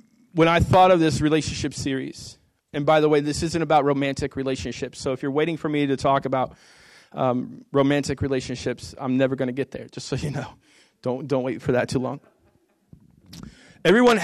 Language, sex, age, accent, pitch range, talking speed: English, male, 20-39, American, 140-165 Hz, 195 wpm